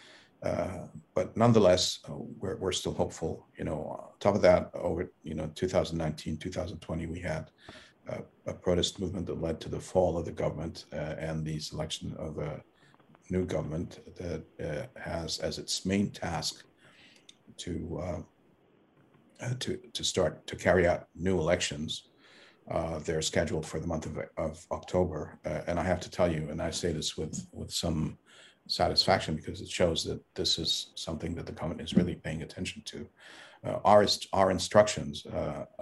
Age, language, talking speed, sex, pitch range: 50-69, English, 170 wpm, male, 80-90 Hz